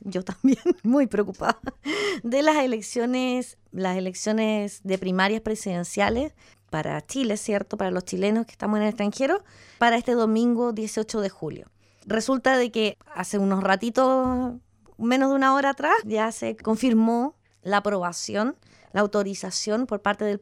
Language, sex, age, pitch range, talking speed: English, female, 20-39, 200-250 Hz, 145 wpm